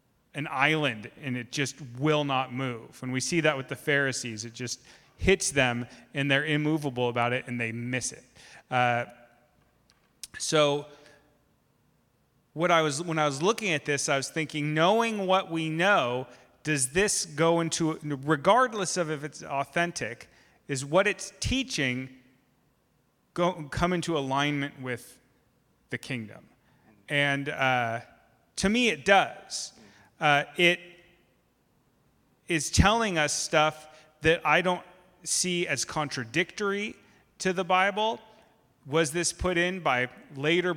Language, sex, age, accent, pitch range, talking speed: English, male, 30-49, American, 135-175 Hz, 135 wpm